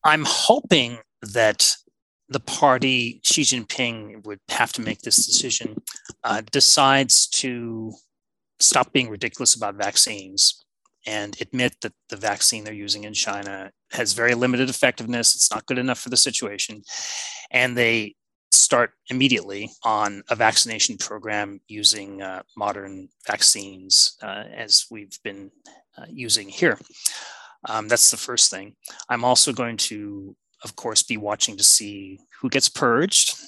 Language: English